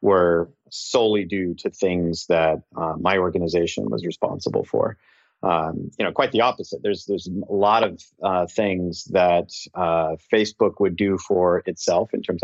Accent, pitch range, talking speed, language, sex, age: American, 90-110 Hz, 165 wpm, English, male, 30-49